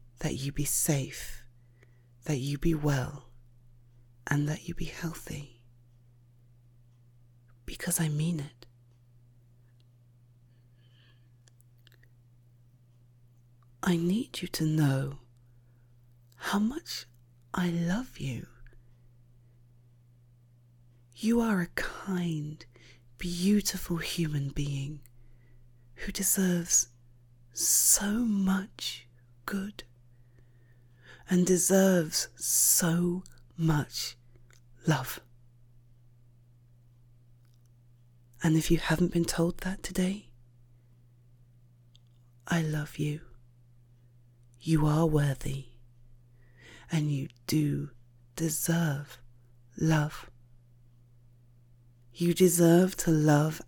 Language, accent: English, British